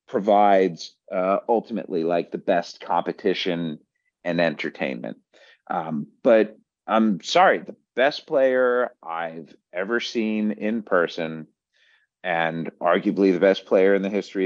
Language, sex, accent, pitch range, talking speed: English, male, American, 80-110 Hz, 120 wpm